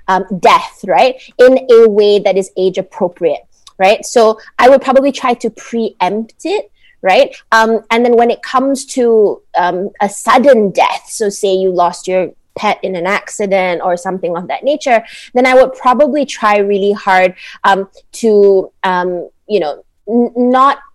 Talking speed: 165 wpm